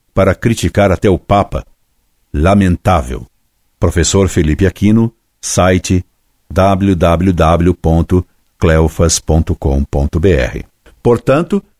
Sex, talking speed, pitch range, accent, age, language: male, 60 wpm, 85-115 Hz, Brazilian, 60-79, Portuguese